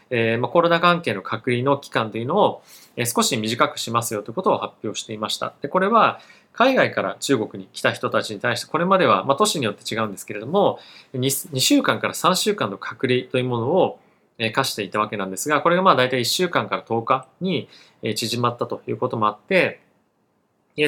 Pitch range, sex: 110-160 Hz, male